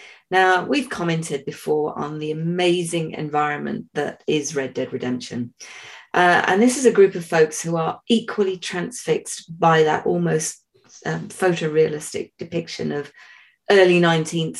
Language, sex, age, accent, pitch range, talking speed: English, female, 30-49, British, 155-200 Hz, 140 wpm